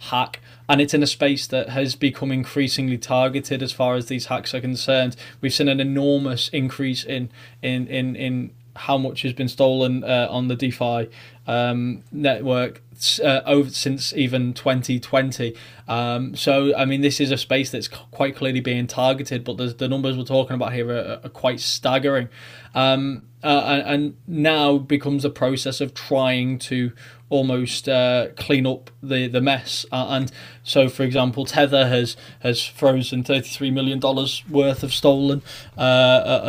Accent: British